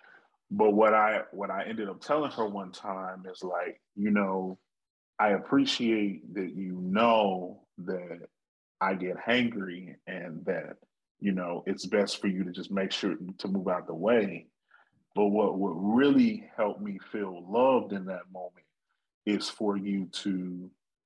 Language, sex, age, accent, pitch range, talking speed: English, male, 30-49, American, 95-120 Hz, 160 wpm